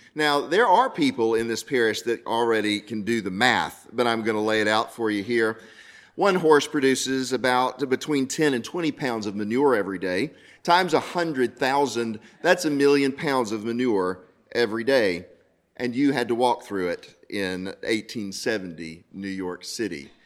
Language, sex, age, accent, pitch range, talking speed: English, male, 40-59, American, 110-145 Hz, 170 wpm